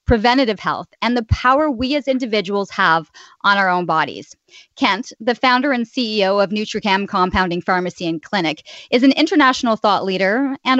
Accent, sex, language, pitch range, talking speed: American, female, English, 195-250 Hz, 165 wpm